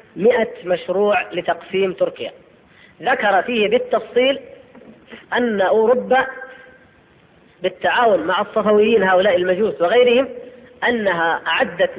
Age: 30-49